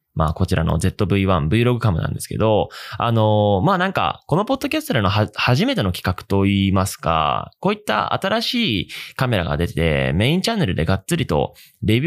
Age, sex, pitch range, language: 20-39, male, 95-150 Hz, Japanese